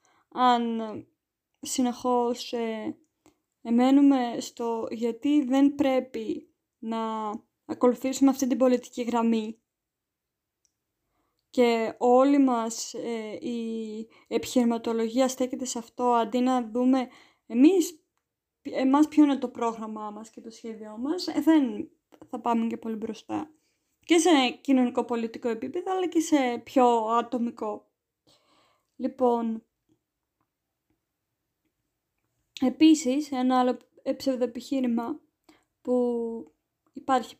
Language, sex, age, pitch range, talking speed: Greek, female, 20-39, 235-285 Hz, 95 wpm